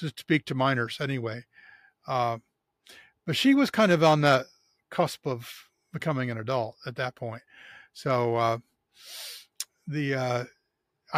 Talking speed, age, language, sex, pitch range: 135 wpm, 50-69, English, male, 130-160 Hz